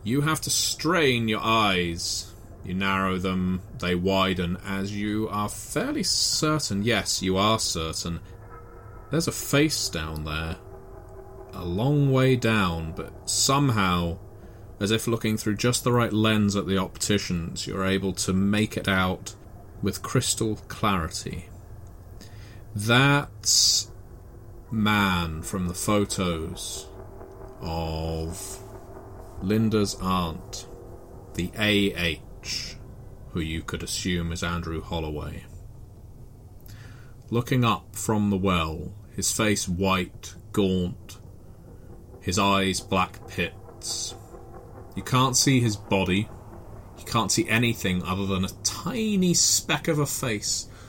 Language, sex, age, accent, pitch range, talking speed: English, male, 30-49, British, 95-115 Hz, 115 wpm